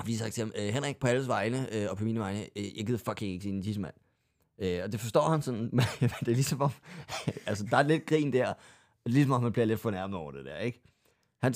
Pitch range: 105-135 Hz